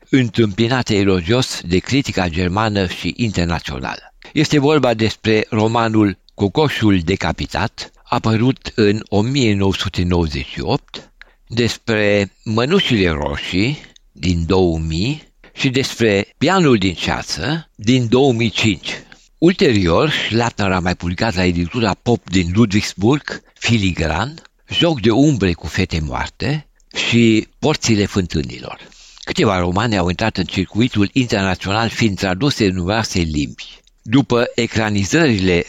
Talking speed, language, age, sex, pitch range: 105 wpm, Romanian, 60-79, male, 90-120 Hz